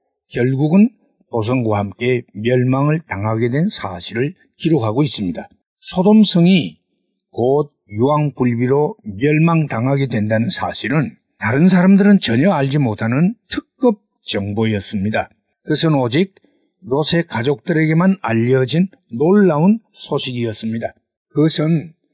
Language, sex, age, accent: Korean, male, 60-79, native